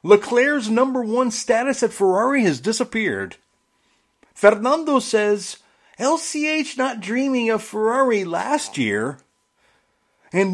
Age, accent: 40-59, American